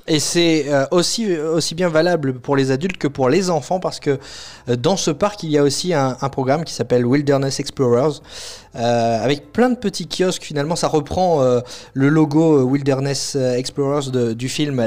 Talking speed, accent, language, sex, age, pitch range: 185 wpm, French, French, male, 30-49, 130-170 Hz